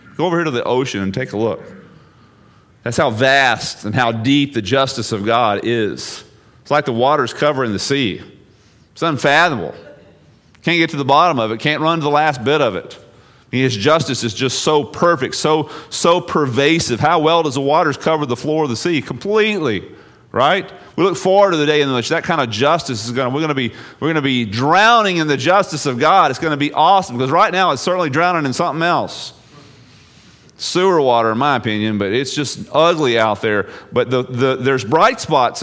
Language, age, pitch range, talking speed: English, 40-59, 125-170 Hz, 215 wpm